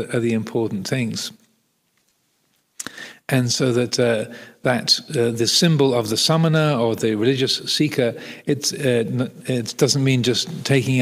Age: 50-69